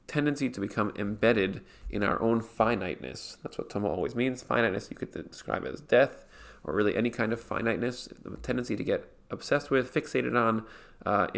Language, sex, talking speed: English, male, 180 wpm